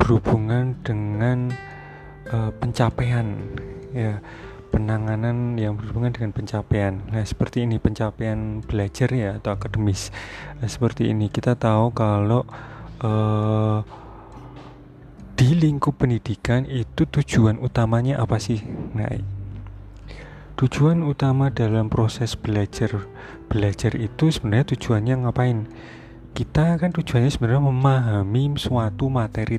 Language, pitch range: Indonesian, 105-130 Hz